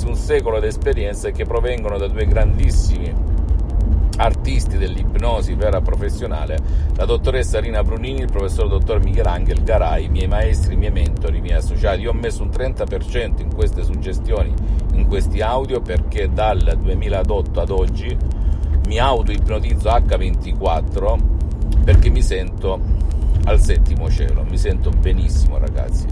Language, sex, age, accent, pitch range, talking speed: Italian, male, 50-69, native, 75-95 Hz, 140 wpm